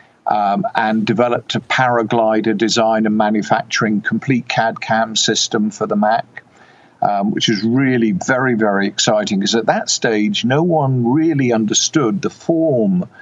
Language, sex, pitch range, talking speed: English, male, 110-130 Hz, 145 wpm